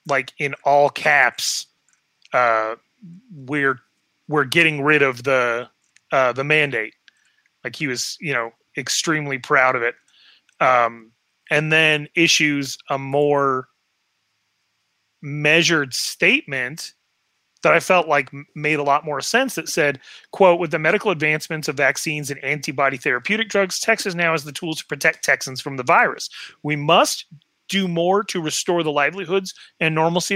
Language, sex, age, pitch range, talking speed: English, male, 30-49, 145-180 Hz, 145 wpm